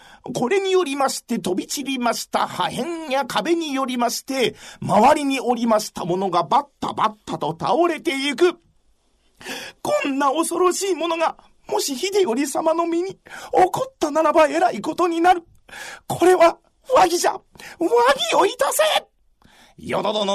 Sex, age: male, 40-59